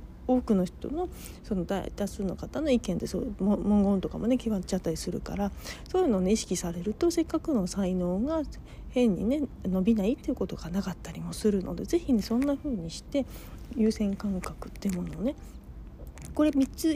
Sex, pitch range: female, 195-275 Hz